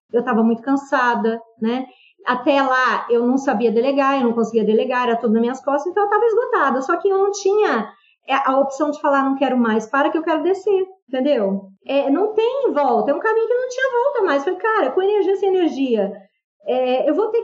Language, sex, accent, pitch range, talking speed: Portuguese, female, Brazilian, 235-335 Hz, 220 wpm